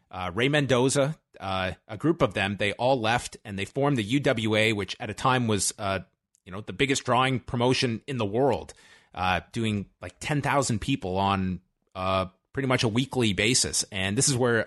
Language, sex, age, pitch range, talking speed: English, male, 30-49, 100-130 Hz, 190 wpm